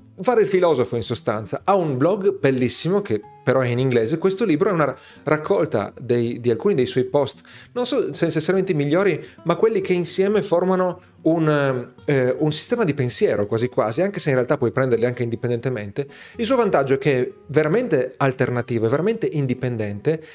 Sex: male